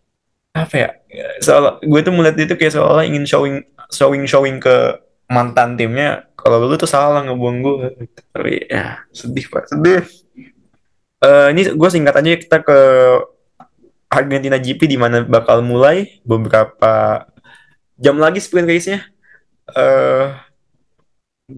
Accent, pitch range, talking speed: native, 125-155 Hz, 120 wpm